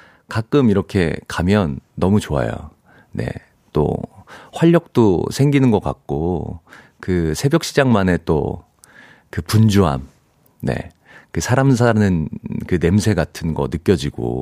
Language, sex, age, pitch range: Korean, male, 40-59, 90-145 Hz